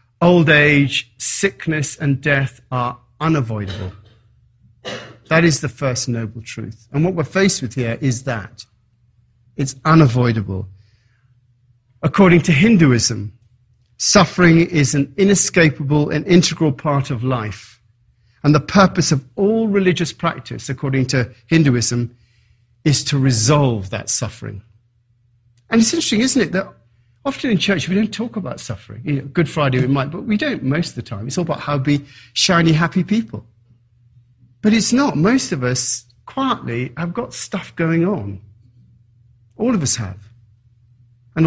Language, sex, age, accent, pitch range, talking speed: English, male, 40-59, British, 120-170 Hz, 150 wpm